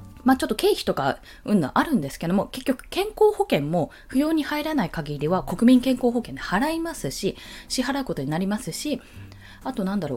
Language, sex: Japanese, female